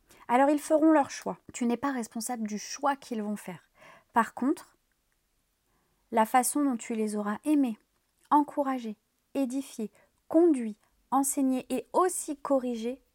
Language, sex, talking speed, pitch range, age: French, female, 135 wpm, 215-265 Hz, 30-49